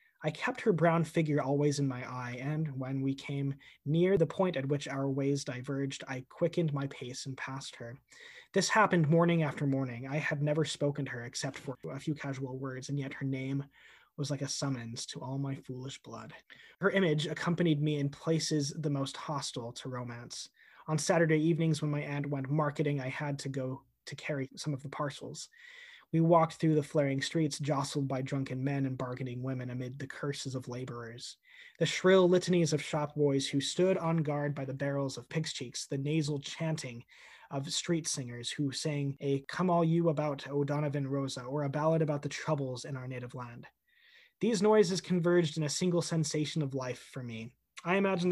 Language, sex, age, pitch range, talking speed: English, male, 20-39, 135-160 Hz, 195 wpm